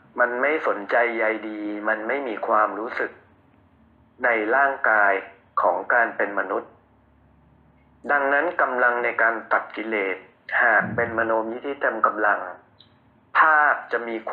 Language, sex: Thai, male